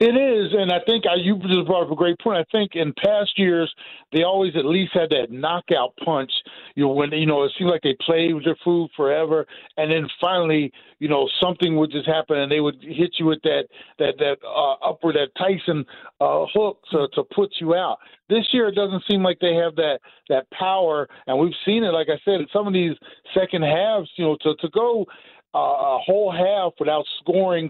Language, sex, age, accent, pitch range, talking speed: English, male, 50-69, American, 150-185 Hz, 225 wpm